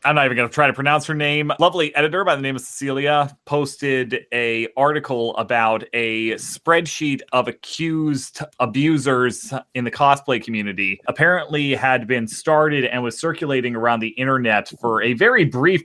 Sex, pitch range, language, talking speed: male, 115-140 Hz, English, 165 wpm